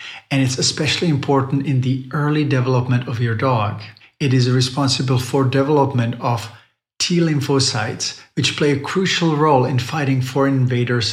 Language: English